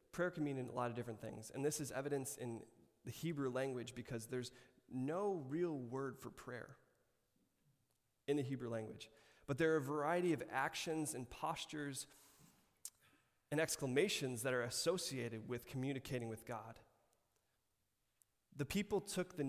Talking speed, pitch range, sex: 155 wpm, 120-145 Hz, male